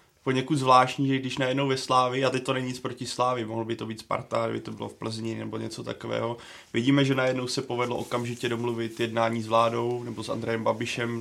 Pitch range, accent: 115-125 Hz, native